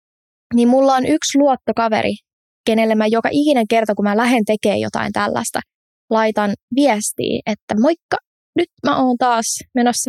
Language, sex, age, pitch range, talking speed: Finnish, female, 20-39, 210-250 Hz, 150 wpm